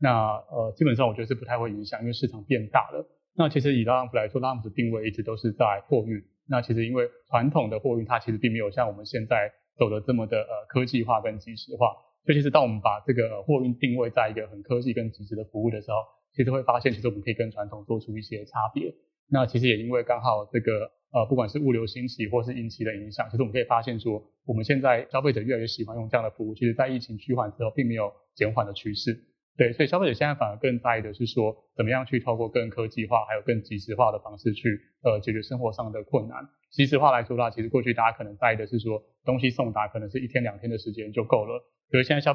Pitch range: 110-130 Hz